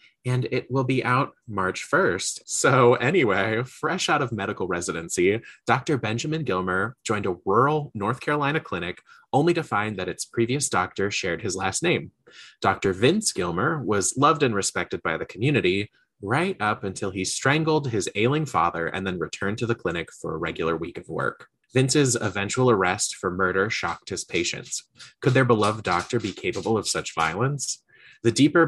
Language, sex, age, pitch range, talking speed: English, male, 20-39, 100-130 Hz, 175 wpm